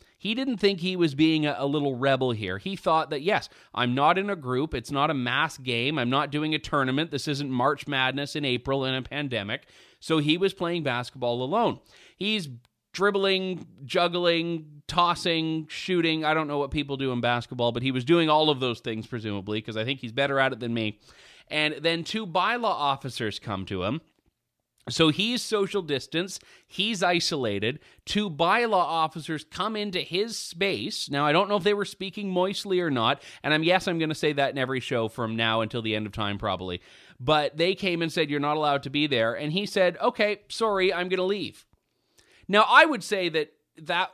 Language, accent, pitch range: English, American, 135-185 Hz